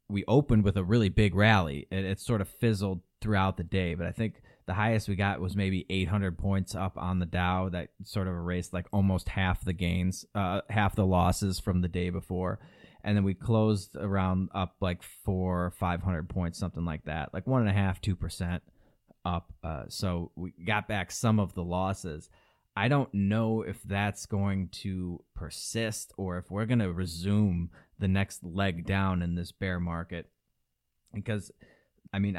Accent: American